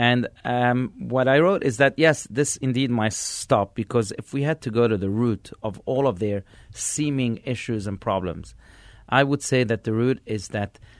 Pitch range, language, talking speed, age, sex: 105-135 Hz, English, 200 wpm, 40-59, male